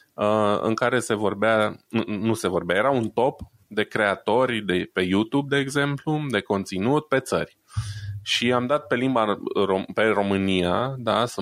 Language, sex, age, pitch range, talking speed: Romanian, male, 20-39, 95-125 Hz, 150 wpm